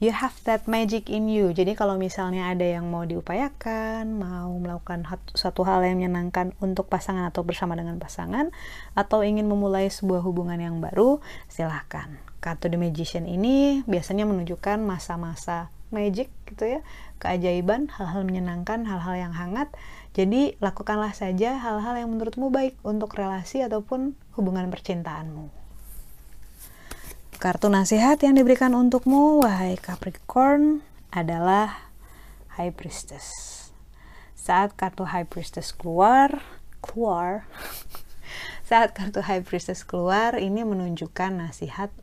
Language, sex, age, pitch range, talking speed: Indonesian, female, 30-49, 170-215 Hz, 120 wpm